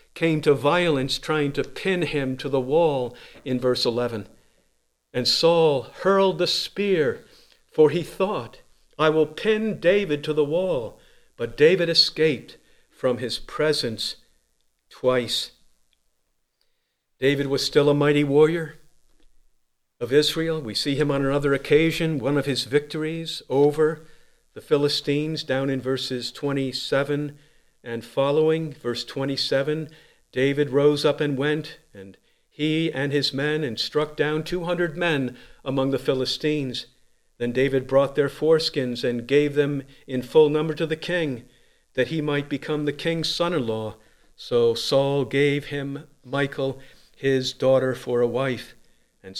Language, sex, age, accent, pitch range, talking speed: English, male, 50-69, American, 130-155 Hz, 140 wpm